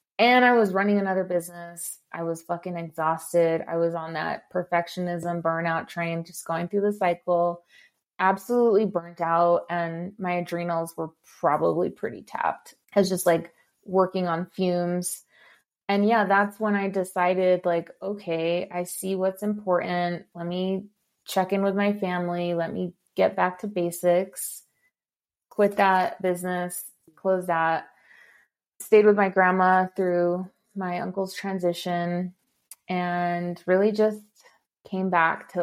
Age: 20-39